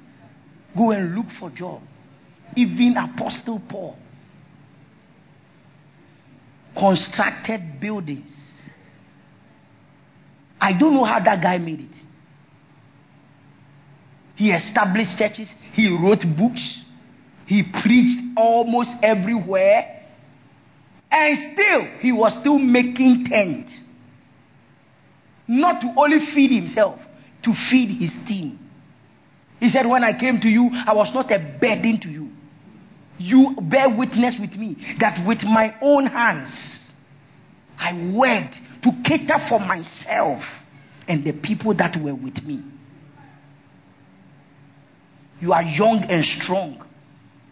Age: 50-69